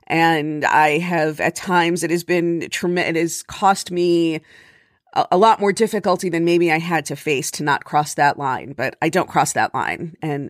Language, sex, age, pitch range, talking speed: English, female, 40-59, 165-205 Hz, 200 wpm